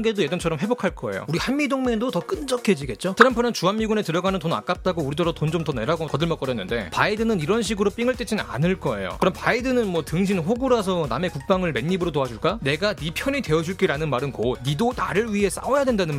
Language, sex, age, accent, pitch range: Korean, male, 30-49, native, 175-240 Hz